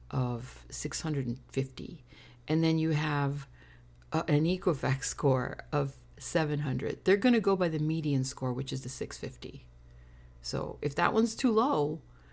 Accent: American